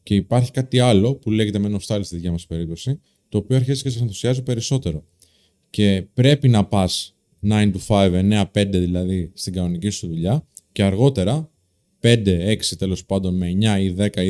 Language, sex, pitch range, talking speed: Greek, male, 95-135 Hz, 170 wpm